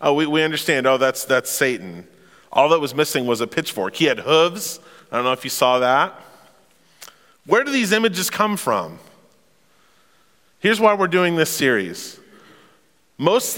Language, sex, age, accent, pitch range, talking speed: English, male, 40-59, American, 125-165 Hz, 170 wpm